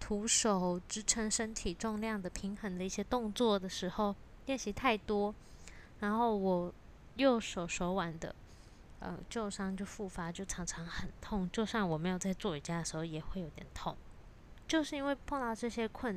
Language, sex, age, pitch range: Chinese, female, 20-39, 180-220 Hz